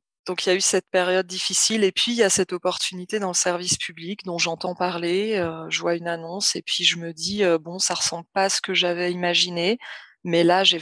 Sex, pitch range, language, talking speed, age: female, 175-195 Hz, French, 255 wpm, 20-39